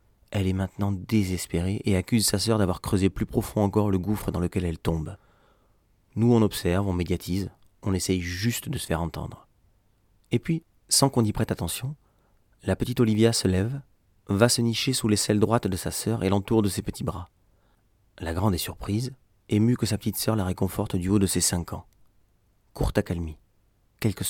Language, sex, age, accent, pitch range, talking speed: English, male, 30-49, French, 95-115 Hz, 195 wpm